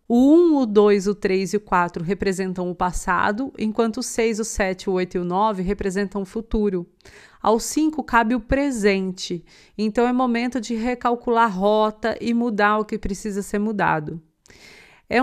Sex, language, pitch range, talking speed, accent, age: female, Portuguese, 200-240 Hz, 175 wpm, Brazilian, 30-49